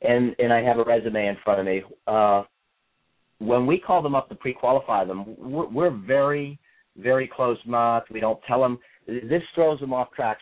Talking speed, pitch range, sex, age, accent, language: 190 wpm, 125-150 Hz, male, 50-69, American, English